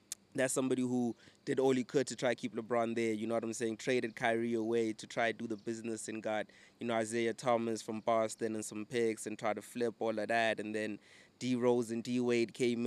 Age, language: 20-39, English